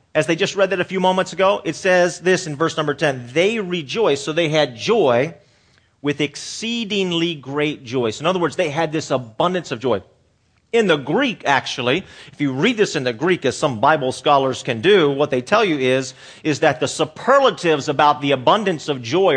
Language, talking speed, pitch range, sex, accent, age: English, 210 wpm, 105-150 Hz, male, American, 40-59